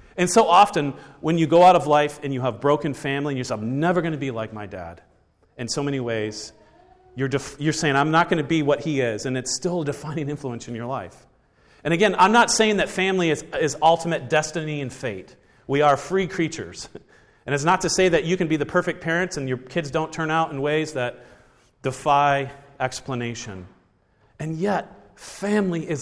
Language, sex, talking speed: English, male, 215 wpm